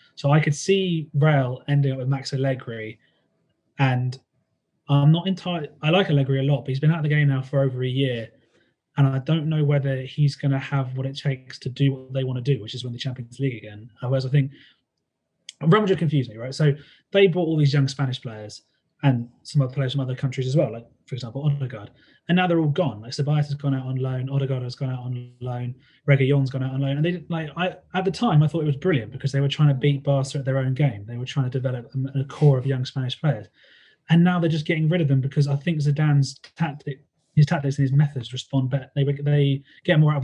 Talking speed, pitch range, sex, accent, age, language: 255 wpm, 130-150 Hz, male, British, 20-39, English